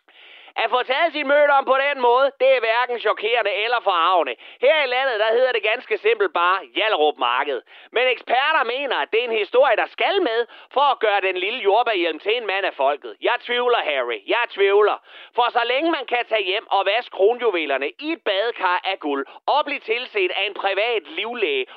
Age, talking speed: 30-49, 205 wpm